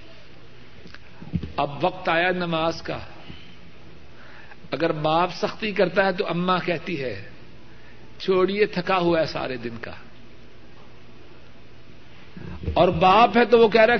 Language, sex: Urdu, male